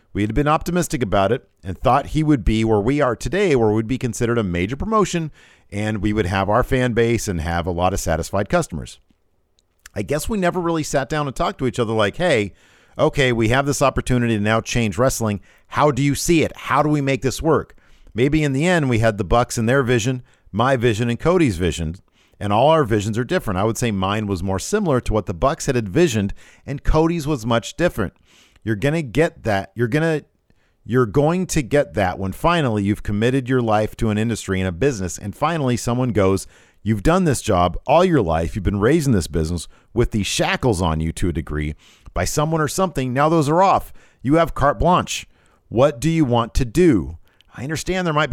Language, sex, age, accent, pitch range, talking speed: English, male, 50-69, American, 100-145 Hz, 220 wpm